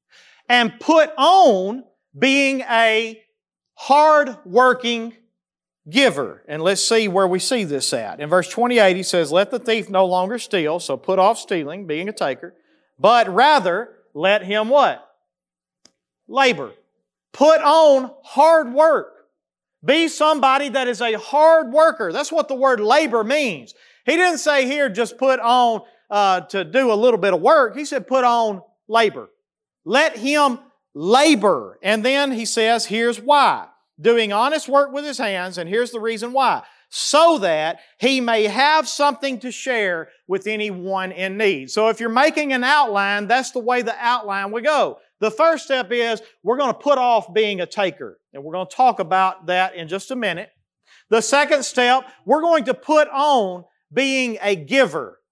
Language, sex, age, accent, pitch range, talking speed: English, male, 40-59, American, 205-280 Hz, 170 wpm